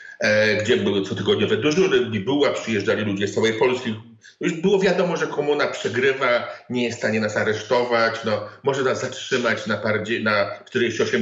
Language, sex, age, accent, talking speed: Polish, male, 50-69, native, 155 wpm